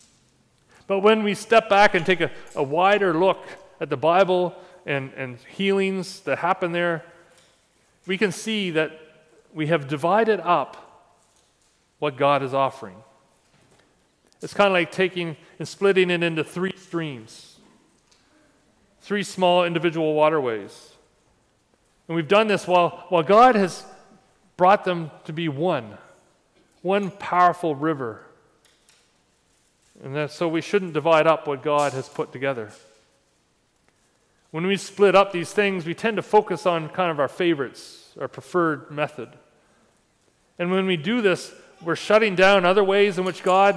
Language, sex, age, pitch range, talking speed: English, male, 40-59, 155-190 Hz, 145 wpm